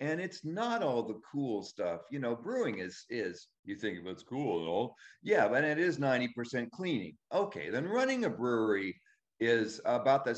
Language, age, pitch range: English, 50-69, 95-130 Hz